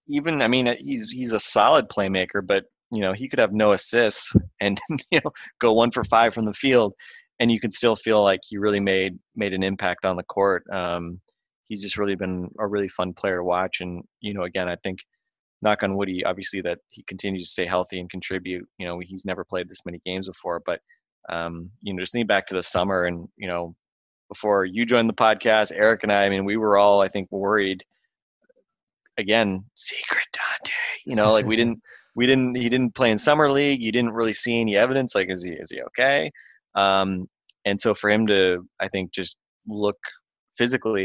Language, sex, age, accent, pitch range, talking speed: English, male, 20-39, American, 90-110 Hz, 215 wpm